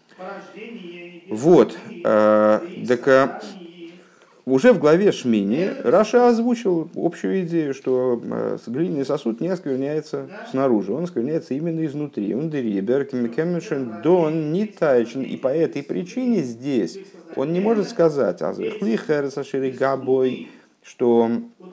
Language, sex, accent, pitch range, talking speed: Russian, male, native, 110-170 Hz, 85 wpm